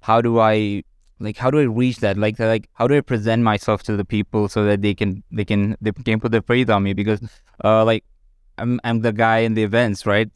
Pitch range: 100-120 Hz